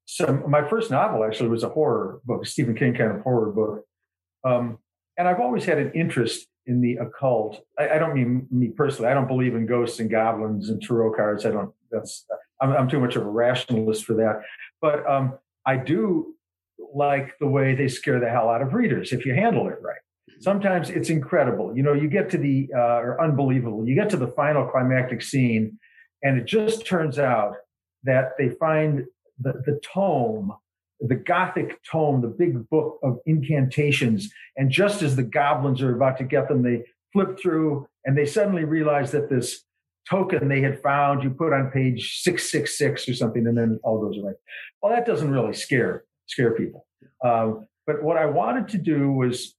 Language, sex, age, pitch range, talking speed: English, male, 50-69, 120-155 Hz, 195 wpm